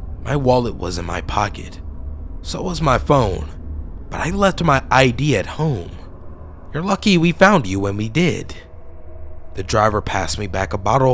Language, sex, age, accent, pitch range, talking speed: English, male, 30-49, American, 80-130 Hz, 170 wpm